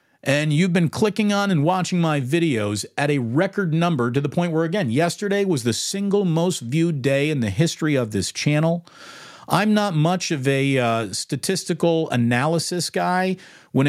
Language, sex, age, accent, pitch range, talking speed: English, male, 50-69, American, 145-190 Hz, 175 wpm